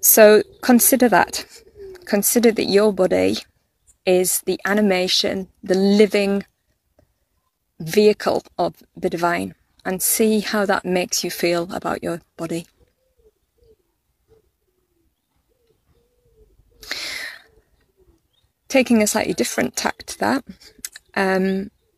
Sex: female